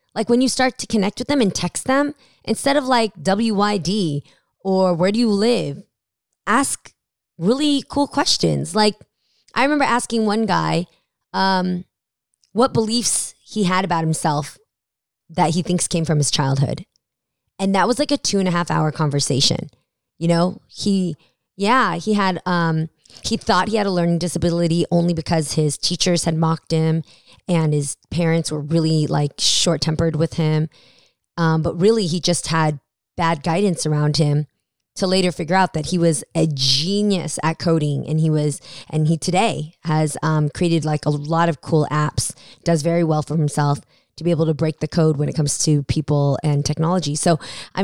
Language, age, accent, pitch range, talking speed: English, 20-39, American, 155-195 Hz, 180 wpm